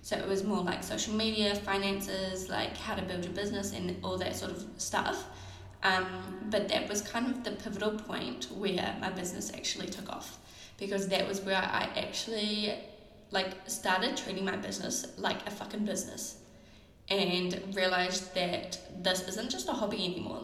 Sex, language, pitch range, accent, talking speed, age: female, English, 180-205 Hz, Australian, 175 wpm, 10-29